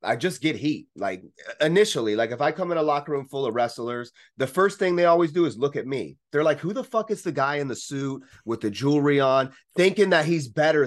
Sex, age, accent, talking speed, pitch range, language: male, 30-49, American, 255 wpm, 120-180 Hz, English